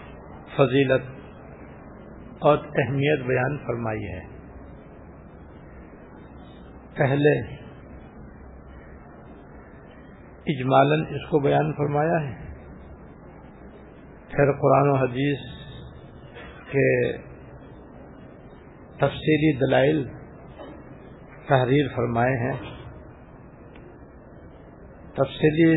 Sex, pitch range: male, 100-145 Hz